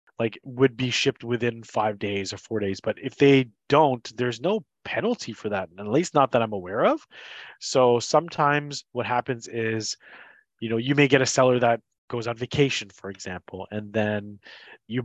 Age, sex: 20-39, male